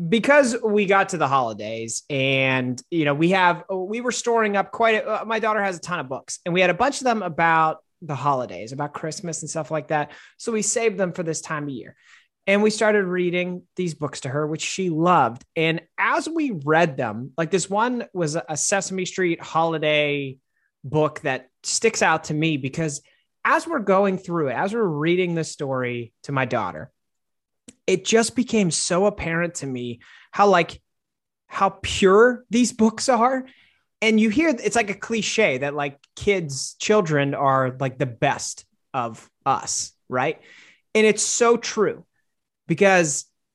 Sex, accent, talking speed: male, American, 180 wpm